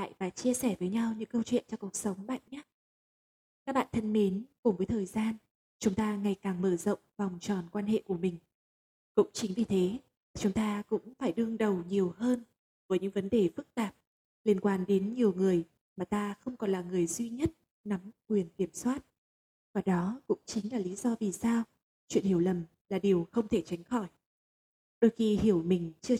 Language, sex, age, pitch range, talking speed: Vietnamese, female, 20-39, 190-235 Hz, 210 wpm